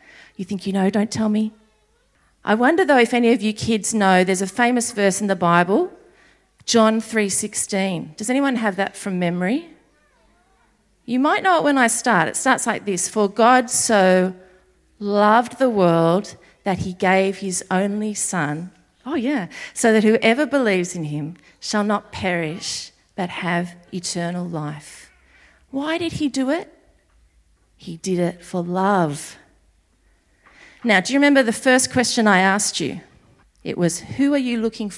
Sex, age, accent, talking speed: female, 40-59, Australian, 165 wpm